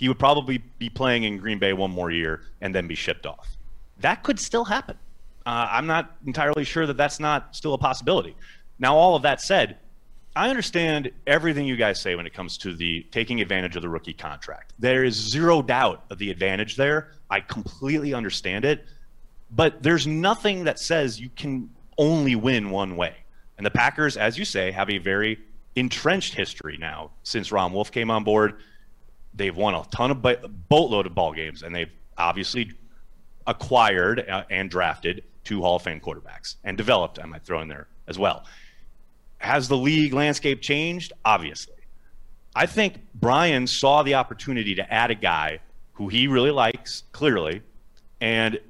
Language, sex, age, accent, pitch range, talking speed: English, male, 30-49, American, 100-145 Hz, 180 wpm